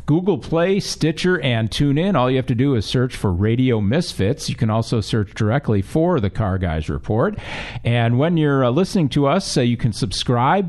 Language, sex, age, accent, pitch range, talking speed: English, male, 50-69, American, 110-145 Hz, 200 wpm